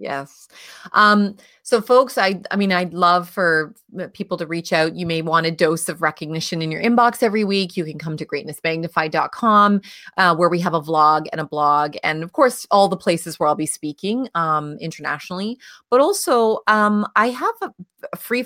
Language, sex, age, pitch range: English, female, 30-49, 165-220 Hz